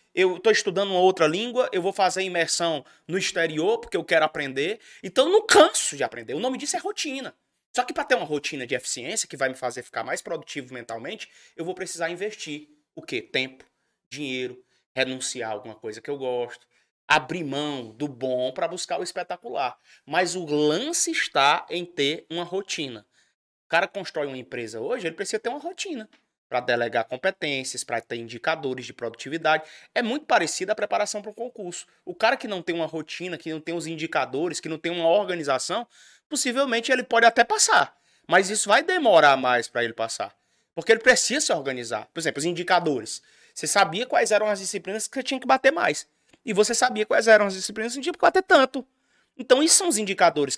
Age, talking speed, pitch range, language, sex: 20-39, 200 wpm, 150-235 Hz, Portuguese, male